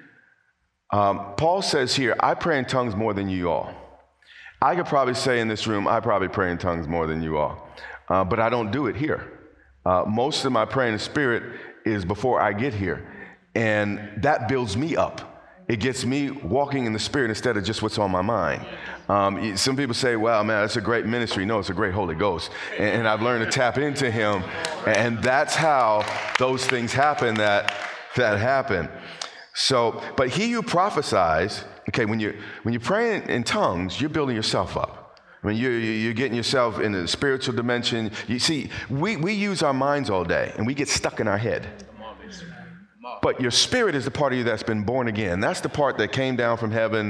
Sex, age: male, 40-59